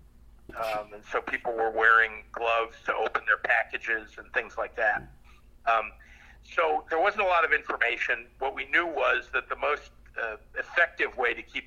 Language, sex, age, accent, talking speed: English, male, 50-69, American, 180 wpm